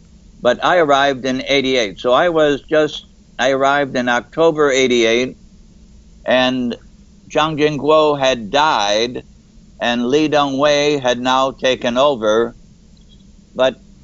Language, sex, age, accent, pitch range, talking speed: English, male, 60-79, American, 120-145 Hz, 115 wpm